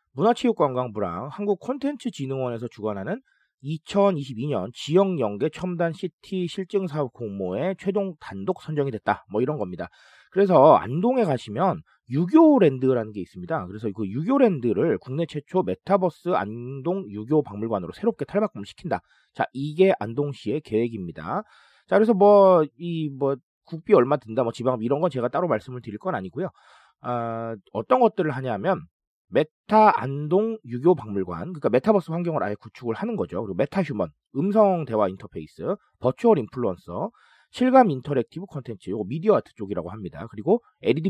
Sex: male